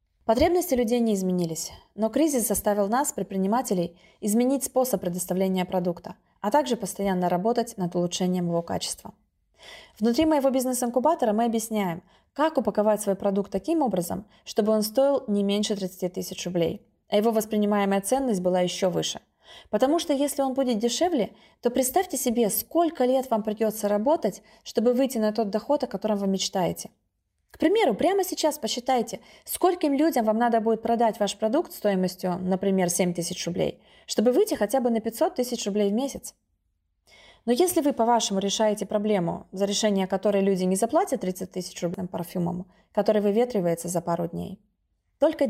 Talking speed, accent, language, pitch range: 155 wpm, native, Russian, 190-255 Hz